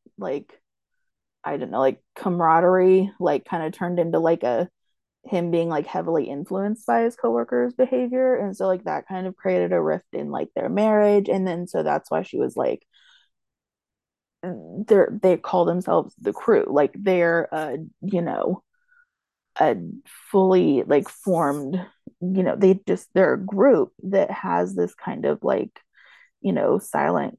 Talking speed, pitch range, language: 160 wpm, 180-250 Hz, English